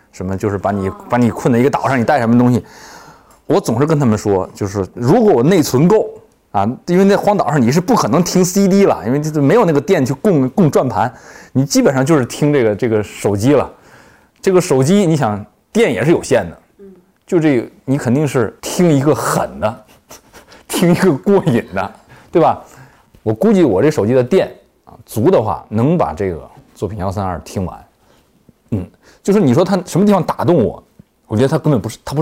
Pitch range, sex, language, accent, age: 110-175 Hz, male, Chinese, native, 20-39